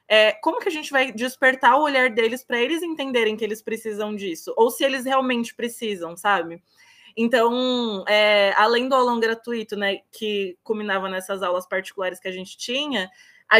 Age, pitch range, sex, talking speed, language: 20-39, 210-260 Hz, female, 170 wpm, Portuguese